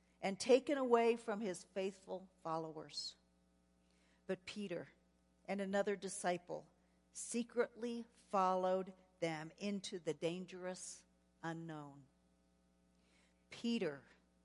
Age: 50-69